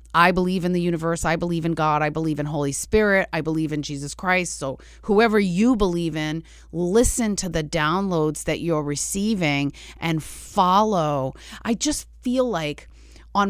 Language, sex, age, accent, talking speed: English, female, 30-49, American, 170 wpm